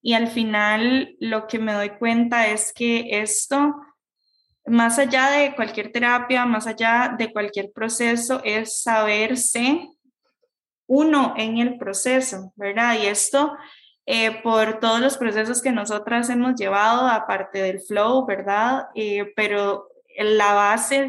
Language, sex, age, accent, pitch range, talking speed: Spanish, female, 10-29, Colombian, 215-260 Hz, 135 wpm